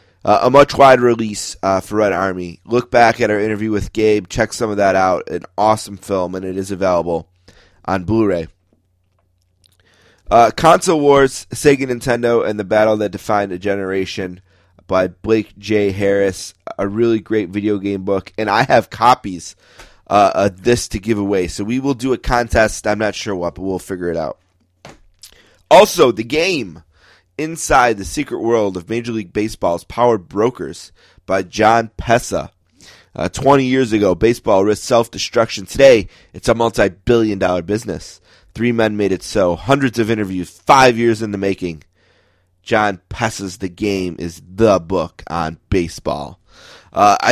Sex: male